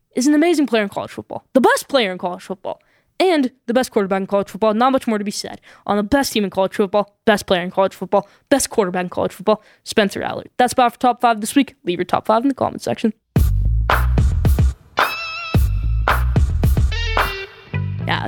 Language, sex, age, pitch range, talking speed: English, female, 10-29, 200-280 Hz, 200 wpm